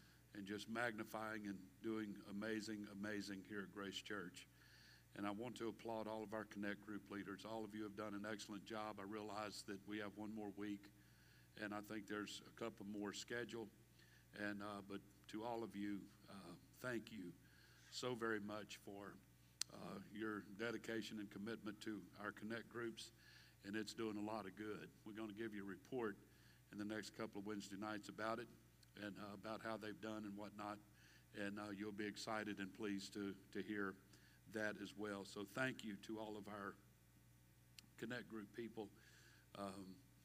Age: 50-69